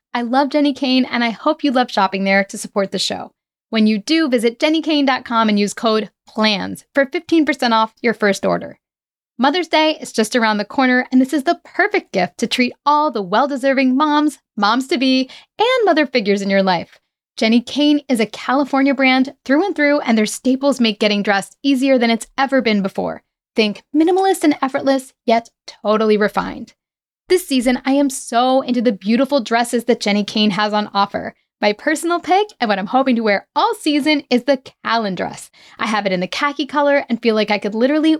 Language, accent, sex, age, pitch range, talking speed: English, American, female, 10-29, 215-290 Hz, 200 wpm